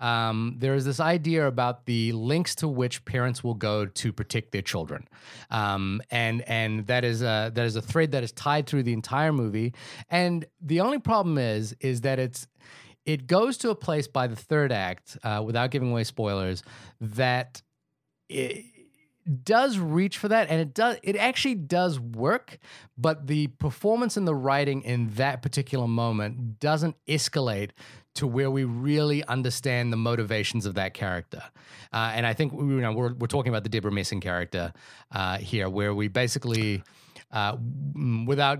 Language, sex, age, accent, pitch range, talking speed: English, male, 30-49, American, 115-150 Hz, 175 wpm